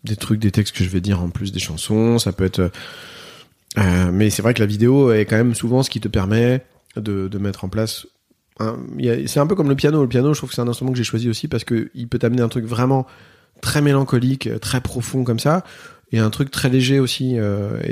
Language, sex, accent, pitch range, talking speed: French, male, French, 105-130 Hz, 250 wpm